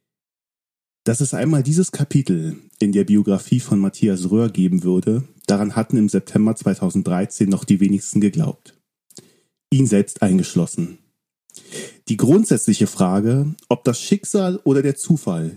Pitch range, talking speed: 105-165 Hz, 130 wpm